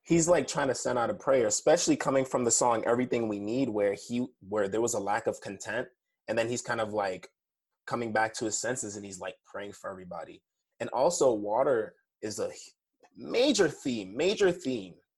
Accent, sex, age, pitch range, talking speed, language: American, male, 20-39, 100-135 Hz, 200 wpm, English